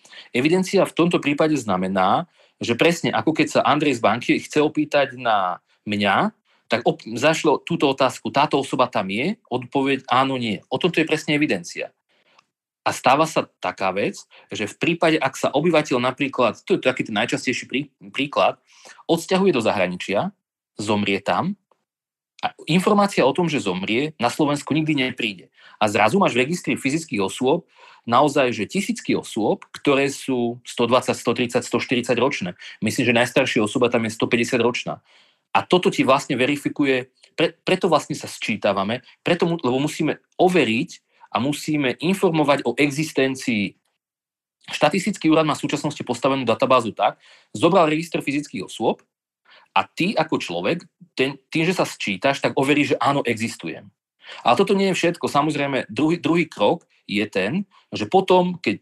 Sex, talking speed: male, 150 wpm